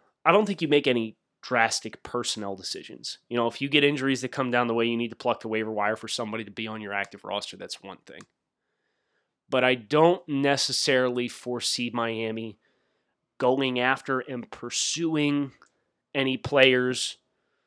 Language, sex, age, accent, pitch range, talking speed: English, male, 20-39, American, 115-150 Hz, 170 wpm